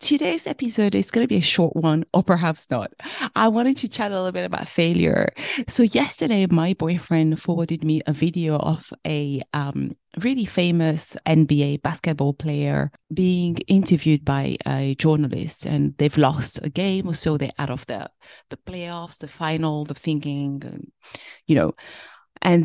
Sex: female